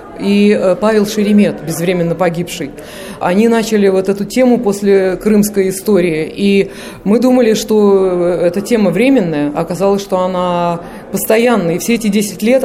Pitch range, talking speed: 170-210 Hz, 140 wpm